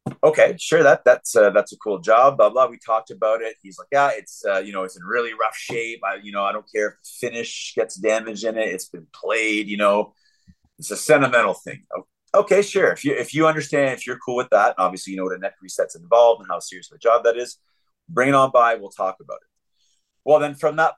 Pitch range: 95-140 Hz